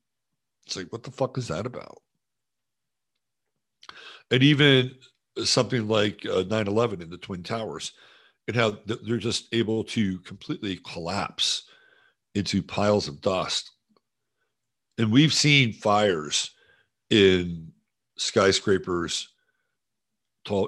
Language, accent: English, American